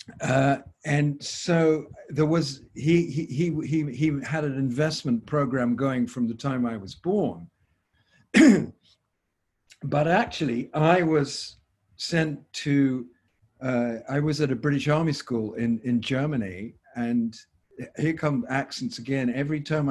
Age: 50-69